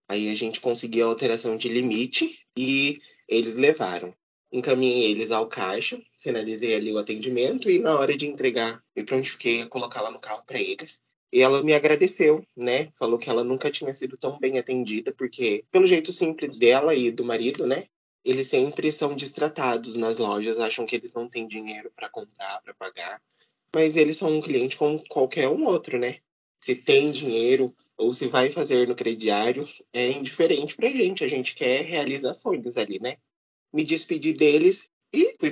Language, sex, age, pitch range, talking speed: Portuguese, male, 20-39, 115-160 Hz, 180 wpm